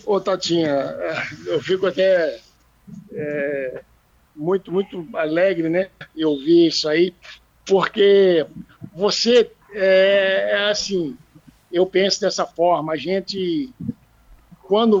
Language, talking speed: Portuguese, 100 wpm